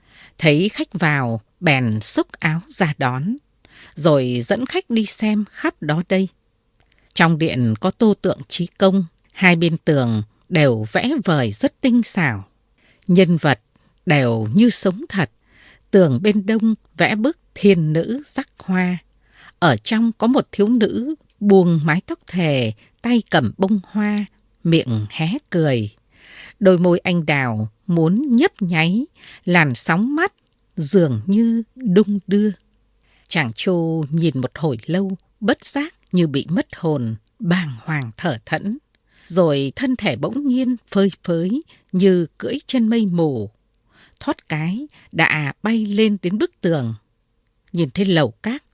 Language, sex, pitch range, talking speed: Vietnamese, female, 140-210 Hz, 145 wpm